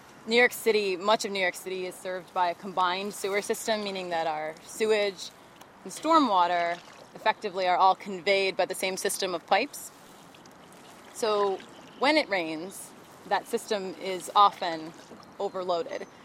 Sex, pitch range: female, 180-220 Hz